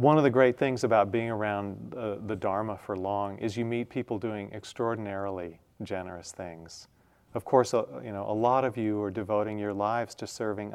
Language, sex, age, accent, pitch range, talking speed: English, male, 40-59, American, 100-120 Hz, 200 wpm